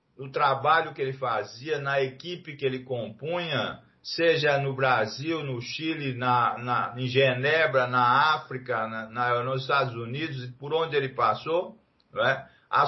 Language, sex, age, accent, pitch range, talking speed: Portuguese, male, 50-69, Brazilian, 130-170 Hz, 130 wpm